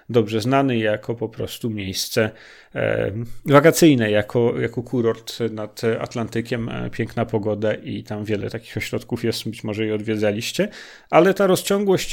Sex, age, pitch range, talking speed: male, 40-59, 115-135 Hz, 135 wpm